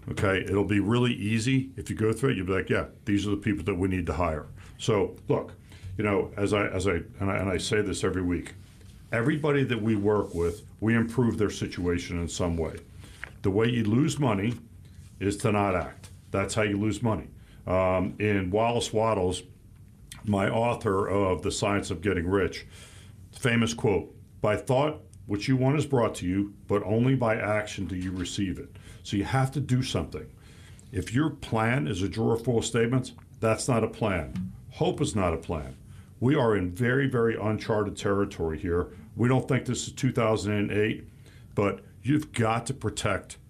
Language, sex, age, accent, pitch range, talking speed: English, male, 60-79, American, 95-115 Hz, 190 wpm